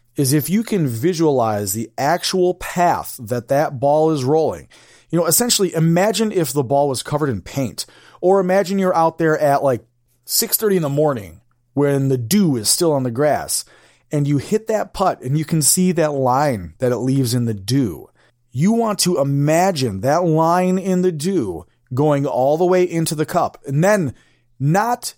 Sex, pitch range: male, 125-175 Hz